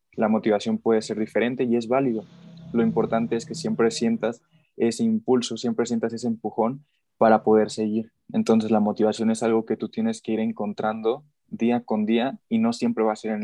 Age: 20-39